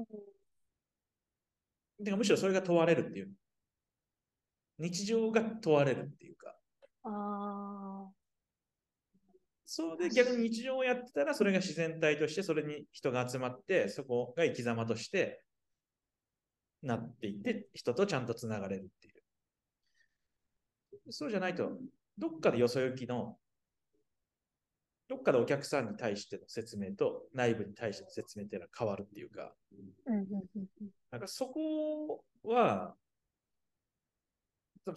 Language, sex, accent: Japanese, male, native